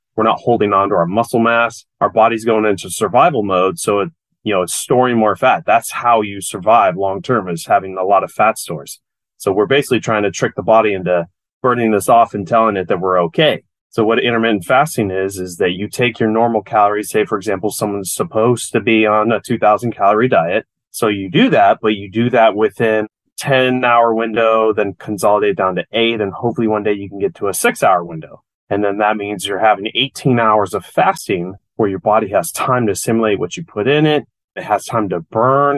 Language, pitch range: English, 100-115 Hz